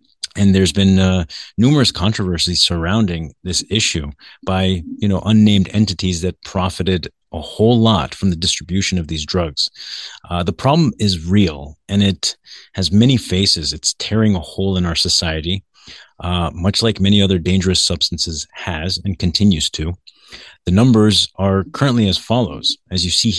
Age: 30-49